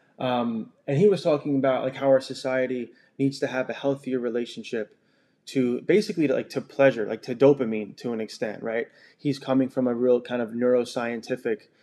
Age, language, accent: 20-39, English, American